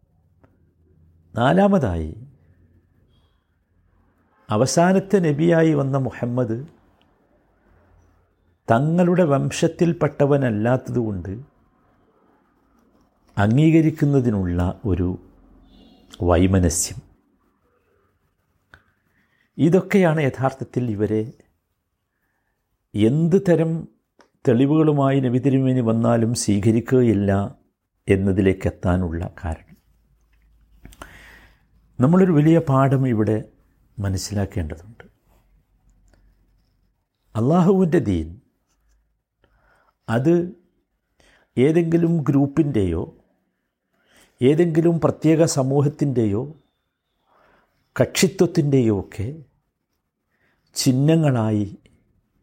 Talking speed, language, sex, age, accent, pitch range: 45 wpm, Malayalam, male, 50-69, native, 90-145 Hz